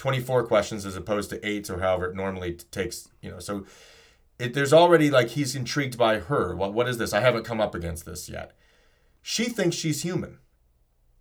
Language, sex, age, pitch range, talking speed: English, male, 30-49, 100-135 Hz, 195 wpm